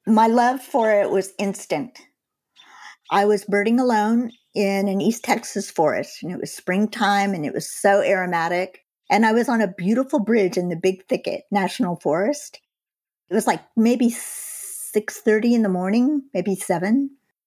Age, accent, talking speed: 50-69, American, 160 wpm